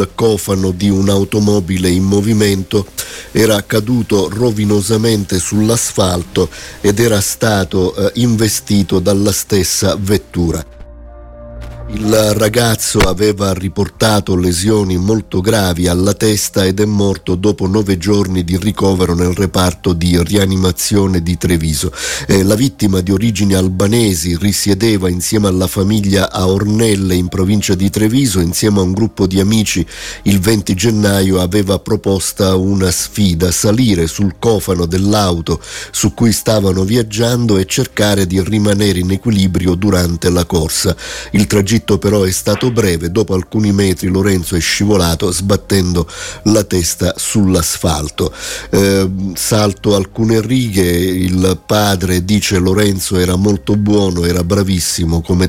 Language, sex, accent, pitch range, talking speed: Italian, male, native, 90-105 Hz, 120 wpm